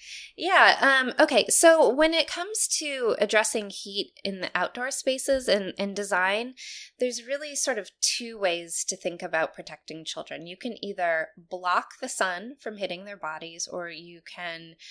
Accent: American